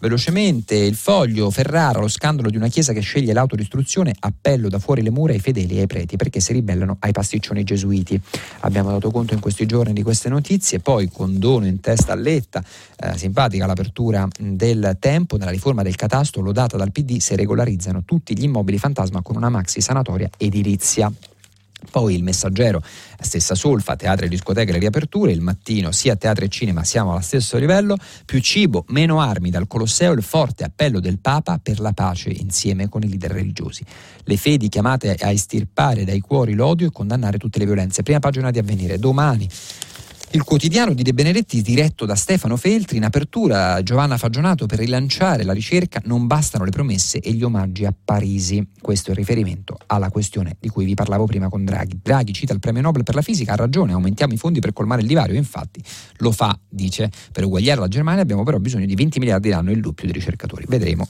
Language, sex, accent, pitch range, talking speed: Italian, male, native, 95-130 Hz, 195 wpm